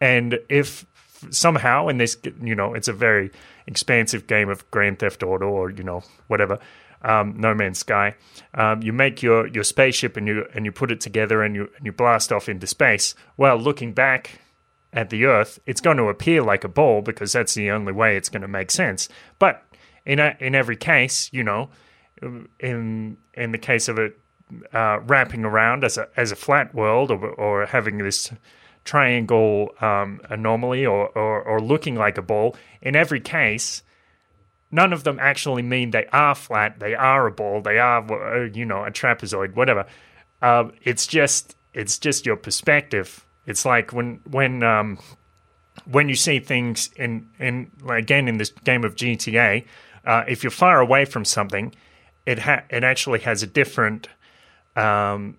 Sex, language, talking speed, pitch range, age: male, English, 180 wpm, 105-130 Hz, 30-49